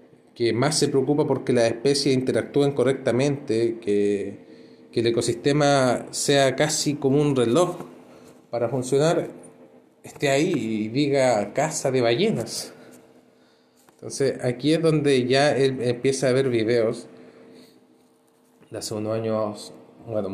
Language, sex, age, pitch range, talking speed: Spanish, male, 30-49, 100-135 Hz, 125 wpm